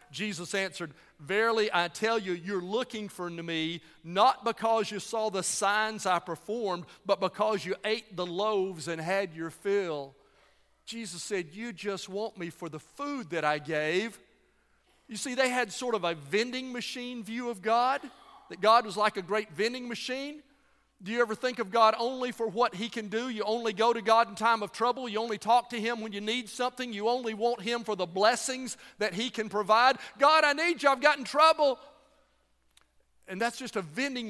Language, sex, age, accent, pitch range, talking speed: English, male, 40-59, American, 195-255 Hz, 200 wpm